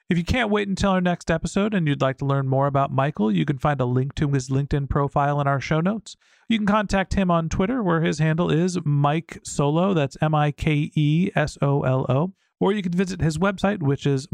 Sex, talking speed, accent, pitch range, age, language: male, 215 wpm, American, 145-180 Hz, 40-59, English